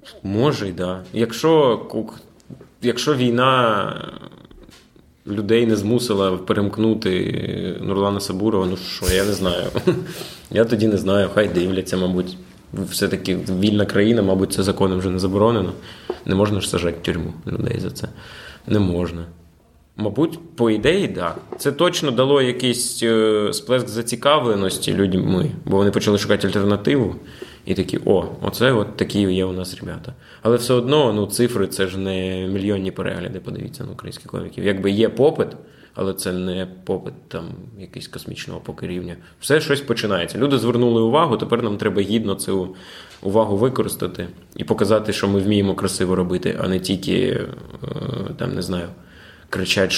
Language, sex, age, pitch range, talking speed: Ukrainian, male, 20-39, 95-115 Hz, 150 wpm